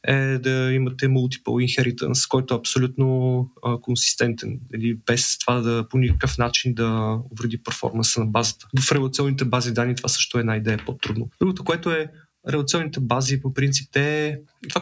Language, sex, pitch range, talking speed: Bulgarian, male, 120-135 Hz, 170 wpm